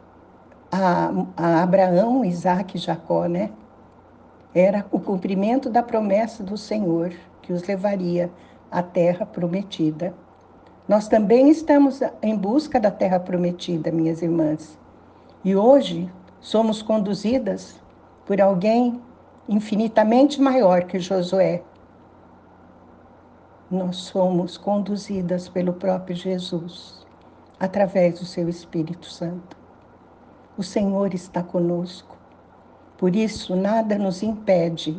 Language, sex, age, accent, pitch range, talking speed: Portuguese, female, 60-79, Brazilian, 175-225 Hz, 100 wpm